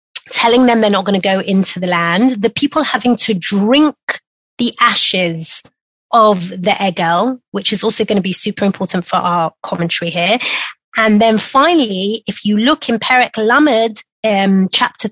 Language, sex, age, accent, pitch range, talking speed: English, female, 30-49, British, 205-265 Hz, 170 wpm